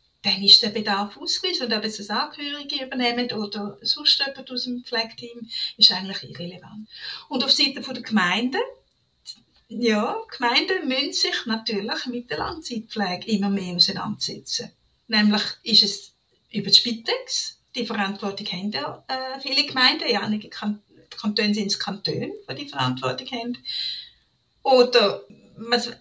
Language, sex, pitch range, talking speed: German, female, 215-290 Hz, 140 wpm